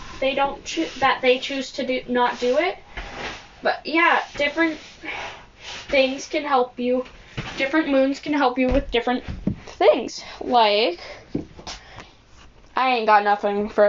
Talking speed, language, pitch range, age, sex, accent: 140 wpm, English, 230-300 Hz, 10-29, female, American